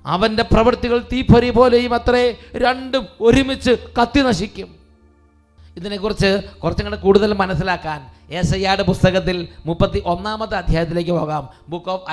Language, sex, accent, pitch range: English, male, Indian, 185-220 Hz